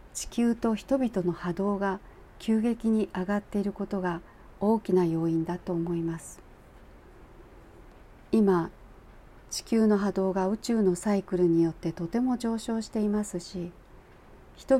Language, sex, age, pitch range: Japanese, female, 40-59, 175-220 Hz